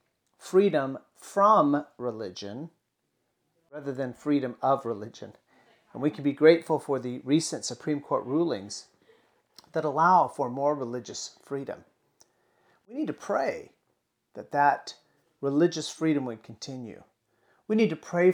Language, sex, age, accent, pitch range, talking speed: English, male, 40-59, American, 120-155 Hz, 130 wpm